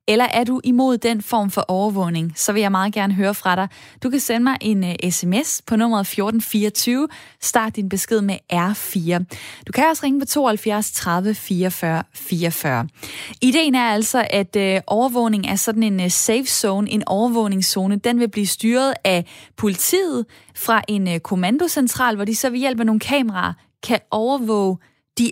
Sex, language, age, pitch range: female, Danish, 20-39, 190-235 Hz